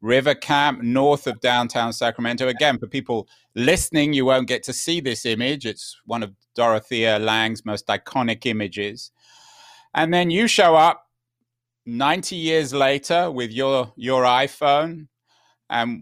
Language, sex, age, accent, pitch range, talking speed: English, male, 30-49, British, 120-150 Hz, 140 wpm